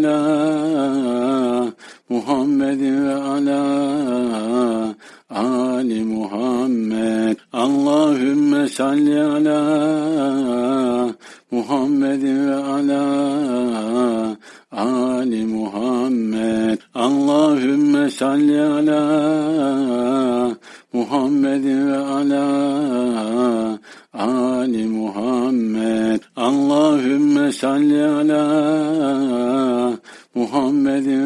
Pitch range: 120-150 Hz